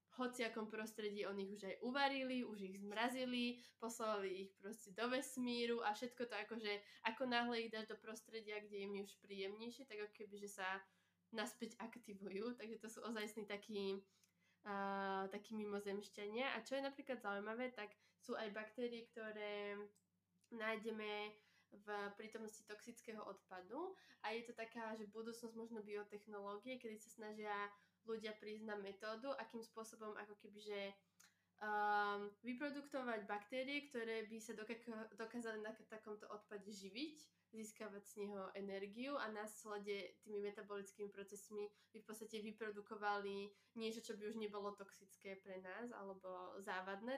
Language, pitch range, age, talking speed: Slovak, 205-230 Hz, 20-39, 145 wpm